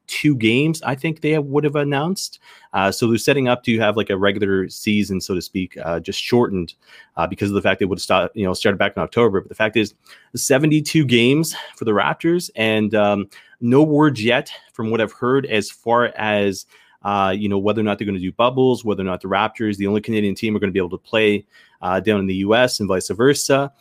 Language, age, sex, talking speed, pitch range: English, 30-49, male, 240 wpm, 100-125 Hz